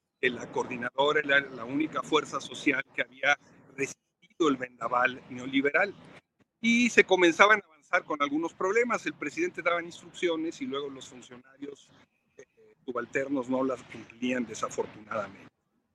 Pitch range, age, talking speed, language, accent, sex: 130-180 Hz, 50-69, 130 wpm, Spanish, Mexican, male